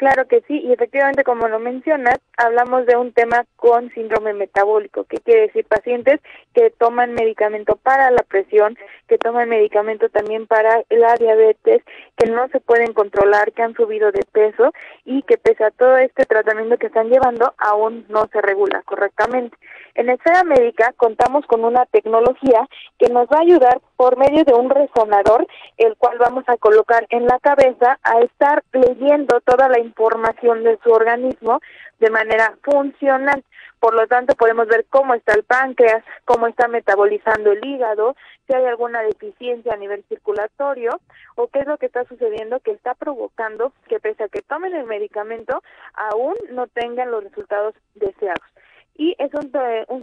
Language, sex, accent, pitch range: Spanish, female, Mexican, 225-270 Hz